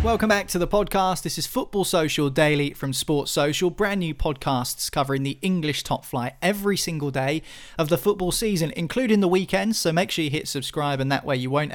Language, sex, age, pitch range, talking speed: English, male, 20-39, 130-165 Hz, 215 wpm